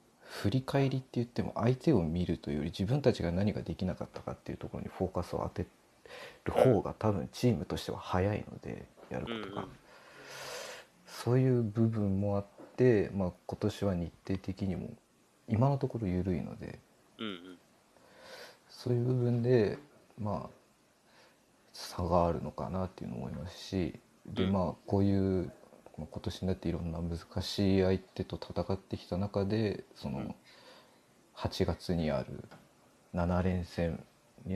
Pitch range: 90-115 Hz